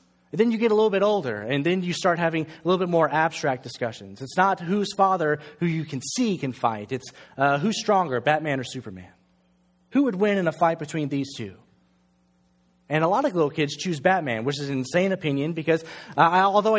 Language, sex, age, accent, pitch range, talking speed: English, male, 30-49, American, 135-185 Hz, 215 wpm